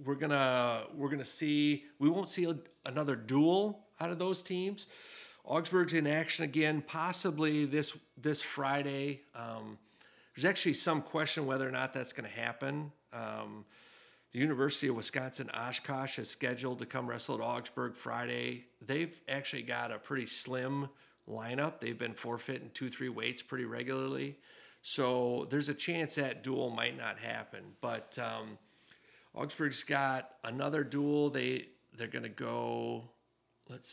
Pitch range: 120-150 Hz